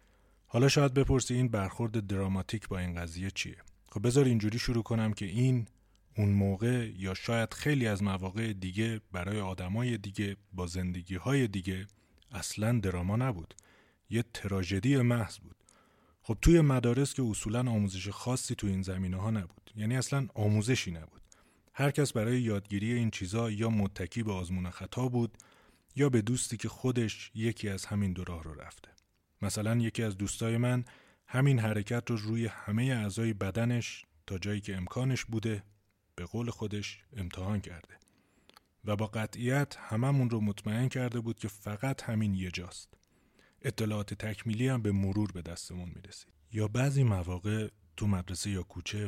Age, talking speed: 30-49, 155 wpm